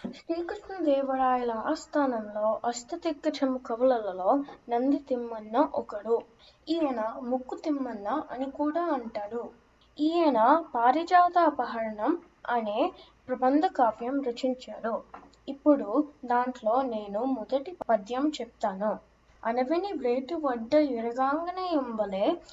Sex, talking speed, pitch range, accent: female, 80 wpm, 235-320 Hz, native